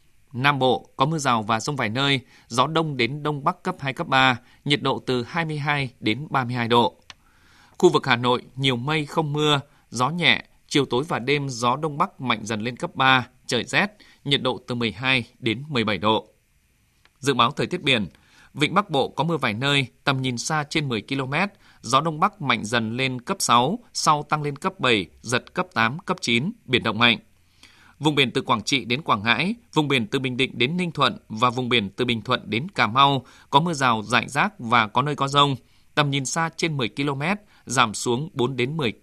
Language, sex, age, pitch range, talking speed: Vietnamese, male, 20-39, 120-150 Hz, 215 wpm